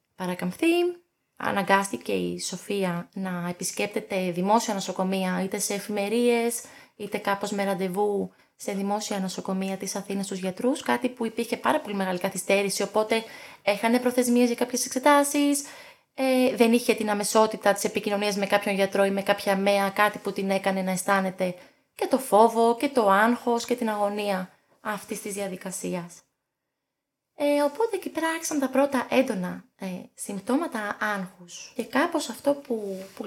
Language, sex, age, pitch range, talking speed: Greek, female, 20-39, 190-240 Hz, 145 wpm